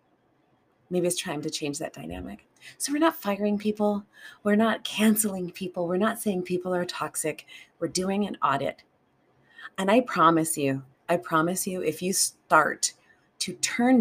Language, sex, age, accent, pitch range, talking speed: English, female, 30-49, American, 160-210 Hz, 165 wpm